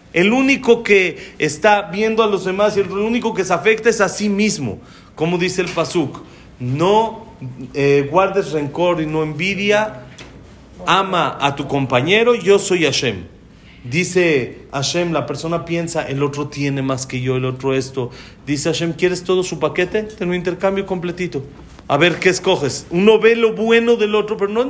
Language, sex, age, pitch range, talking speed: Spanish, male, 40-59, 170-235 Hz, 175 wpm